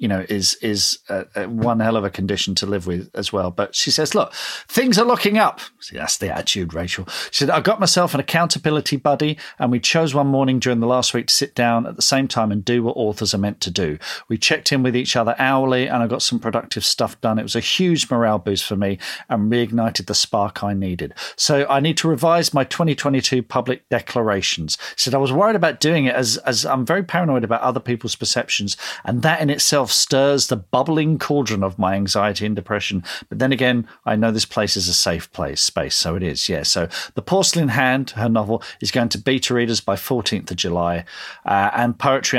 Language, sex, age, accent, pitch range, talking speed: English, male, 40-59, British, 105-140 Hz, 230 wpm